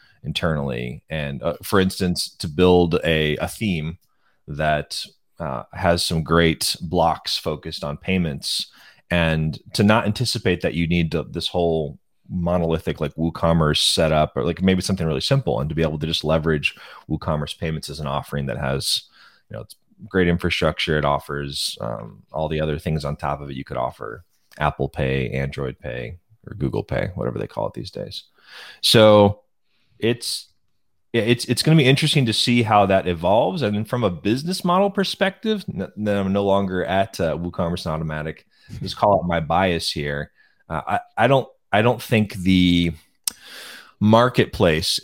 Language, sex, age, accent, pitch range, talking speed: English, male, 20-39, American, 80-105 Hz, 175 wpm